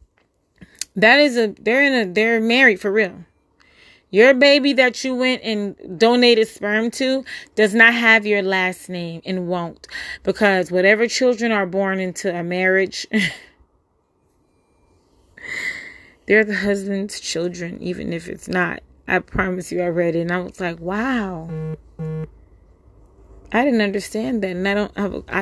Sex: female